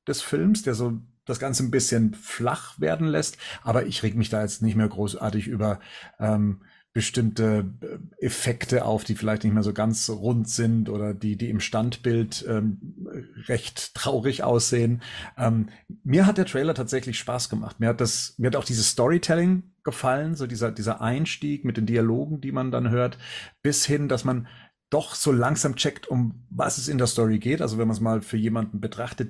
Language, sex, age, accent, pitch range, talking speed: German, male, 40-59, German, 110-135 Hz, 190 wpm